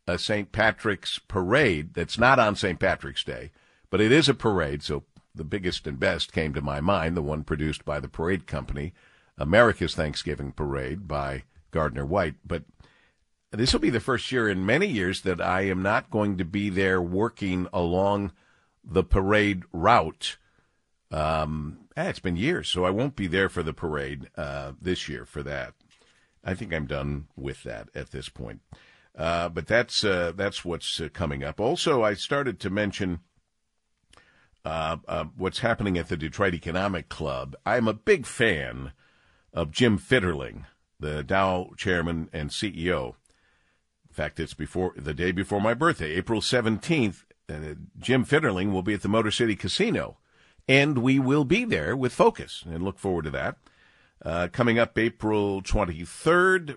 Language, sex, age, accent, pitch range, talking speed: English, male, 50-69, American, 75-105 Hz, 170 wpm